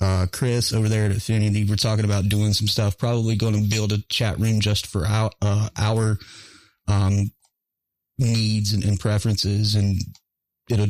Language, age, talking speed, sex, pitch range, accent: English, 30-49, 165 wpm, male, 100-120 Hz, American